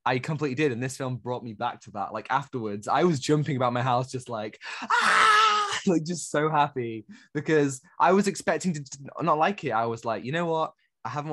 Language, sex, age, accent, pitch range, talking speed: English, male, 20-39, British, 115-140 Hz, 220 wpm